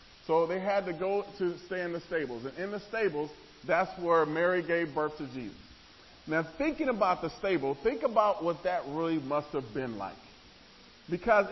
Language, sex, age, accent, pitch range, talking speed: English, male, 40-59, American, 165-220 Hz, 190 wpm